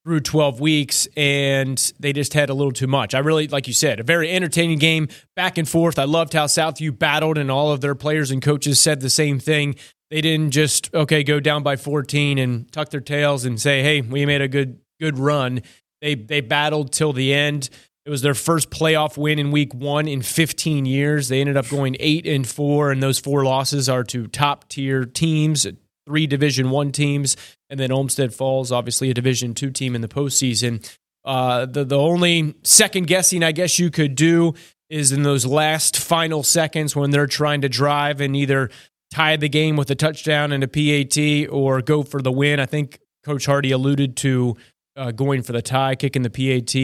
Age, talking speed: 30-49, 205 wpm